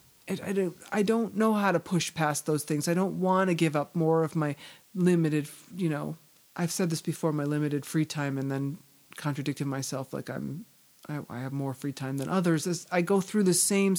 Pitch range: 150-190 Hz